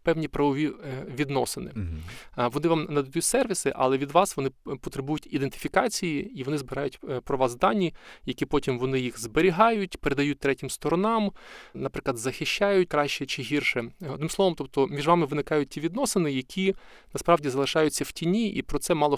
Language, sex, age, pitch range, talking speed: Ukrainian, male, 20-39, 135-170 Hz, 155 wpm